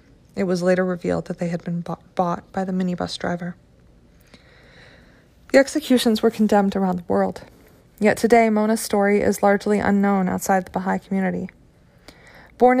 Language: English